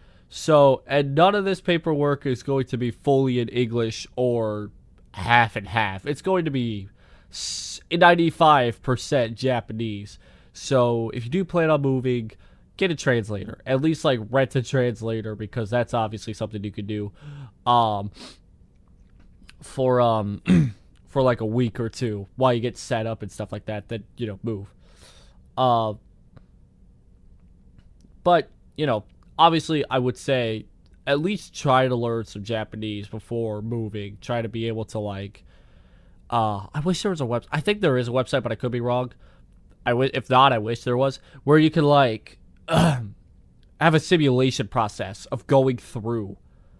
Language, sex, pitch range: English, male, 105-135 Hz